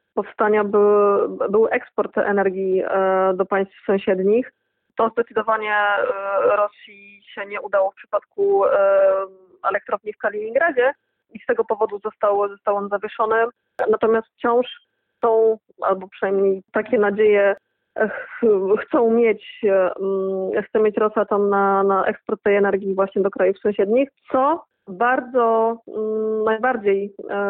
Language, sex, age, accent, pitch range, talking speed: Polish, female, 20-39, native, 200-230 Hz, 115 wpm